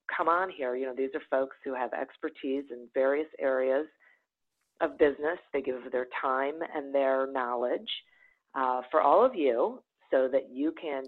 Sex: female